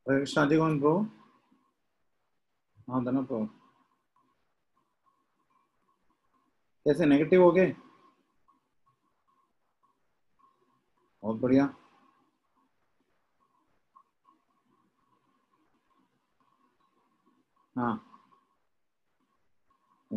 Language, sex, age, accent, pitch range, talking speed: English, male, 50-69, Indian, 130-185 Hz, 40 wpm